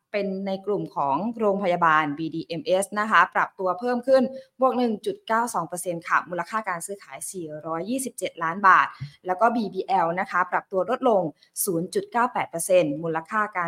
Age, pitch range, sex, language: 20-39, 170-225 Hz, female, Thai